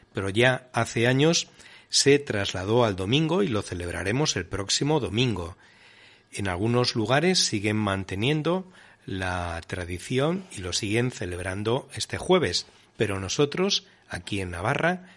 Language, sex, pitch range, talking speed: Spanish, male, 100-145 Hz, 125 wpm